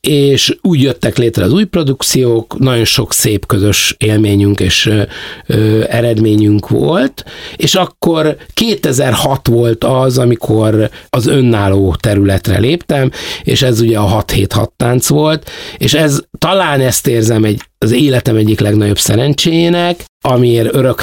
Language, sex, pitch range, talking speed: Hungarian, male, 105-135 Hz, 135 wpm